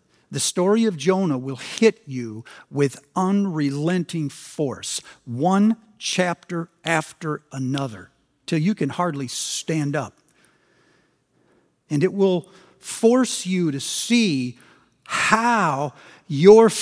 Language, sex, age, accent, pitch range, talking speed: English, male, 60-79, American, 145-205 Hz, 105 wpm